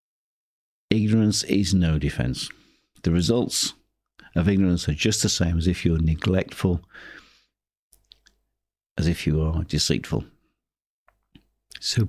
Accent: British